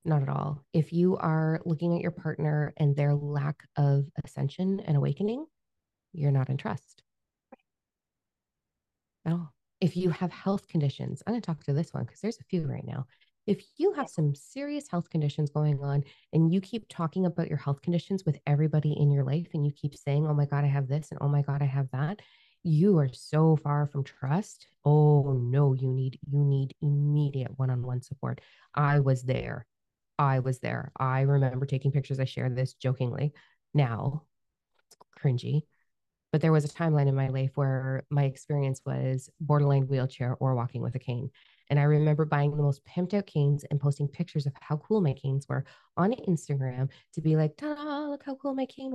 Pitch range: 140-170 Hz